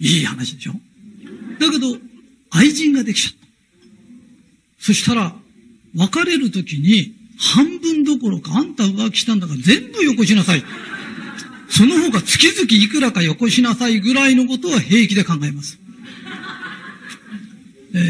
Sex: male